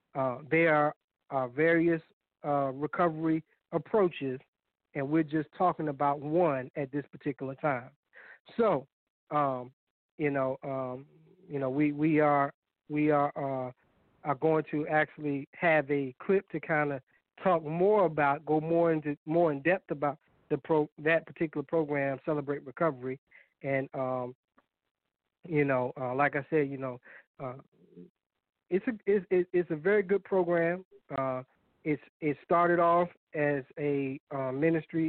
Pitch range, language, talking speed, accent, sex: 140-165 Hz, English, 145 wpm, American, male